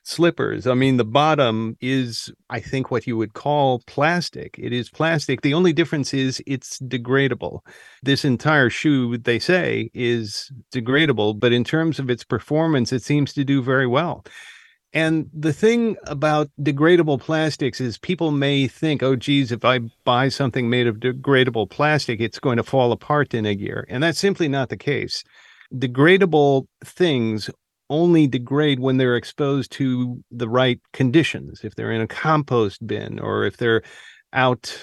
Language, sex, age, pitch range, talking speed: English, male, 50-69, 120-150 Hz, 165 wpm